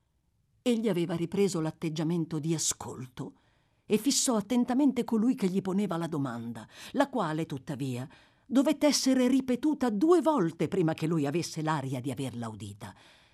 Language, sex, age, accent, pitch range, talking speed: Italian, female, 50-69, native, 155-250 Hz, 140 wpm